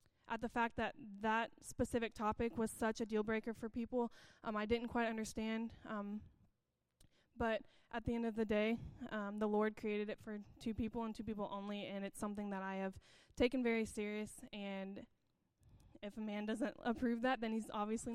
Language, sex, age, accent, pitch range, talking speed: English, female, 10-29, American, 210-235 Hz, 190 wpm